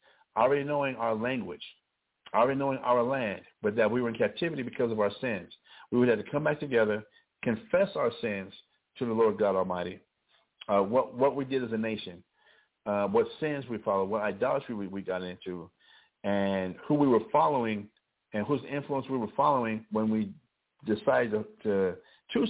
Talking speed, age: 185 wpm, 50-69